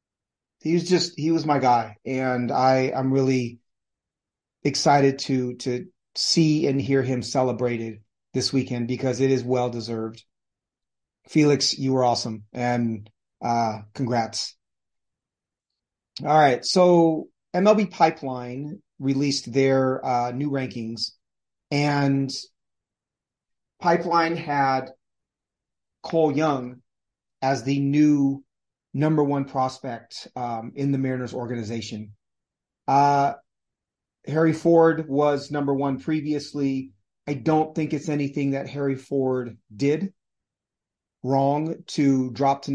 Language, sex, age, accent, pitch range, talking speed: English, male, 30-49, American, 120-145 Hz, 110 wpm